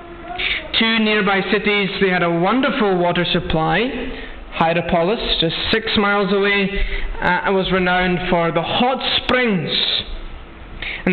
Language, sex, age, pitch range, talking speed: English, male, 20-39, 180-220 Hz, 120 wpm